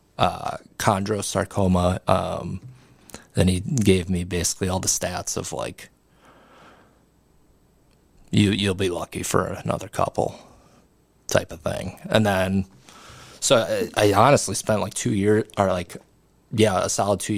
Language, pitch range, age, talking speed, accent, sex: English, 95-100 Hz, 20-39, 135 wpm, American, male